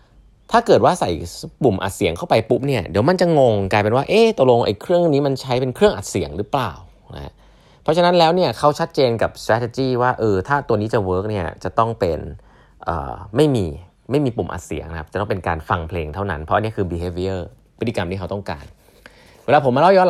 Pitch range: 90-130 Hz